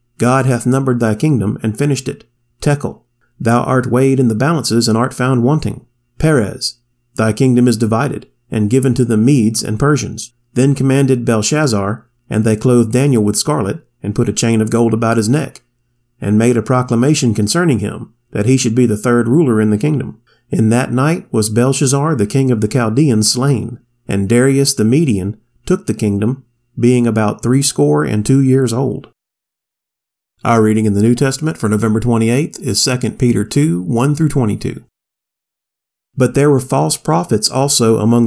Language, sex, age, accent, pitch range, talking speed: English, male, 40-59, American, 110-135 Hz, 175 wpm